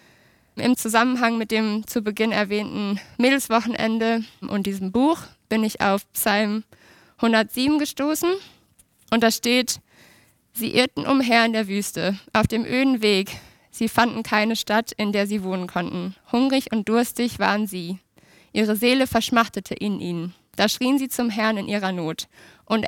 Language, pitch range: German, 205-240 Hz